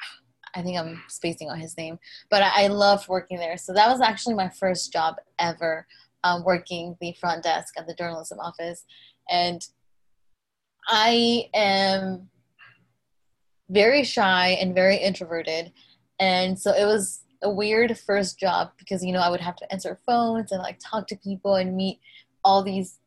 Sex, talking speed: female, 165 wpm